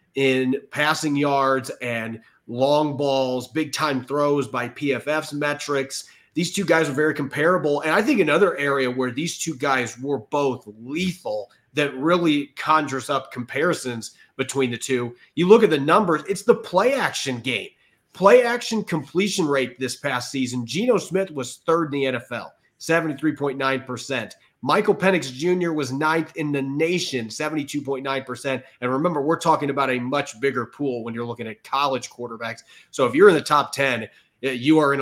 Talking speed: 165 wpm